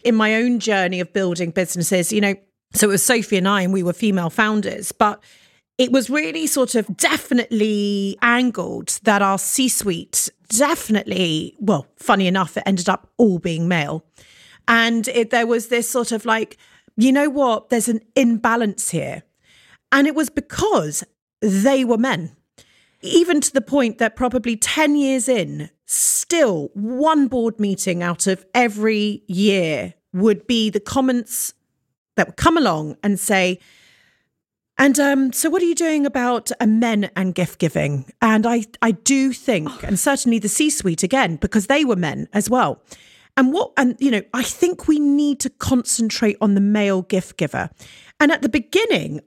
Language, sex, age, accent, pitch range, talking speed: English, female, 40-59, British, 195-260 Hz, 170 wpm